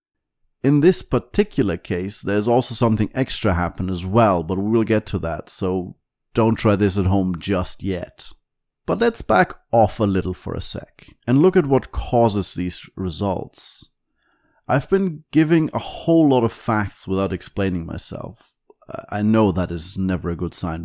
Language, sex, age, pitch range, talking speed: English, male, 30-49, 95-130 Hz, 170 wpm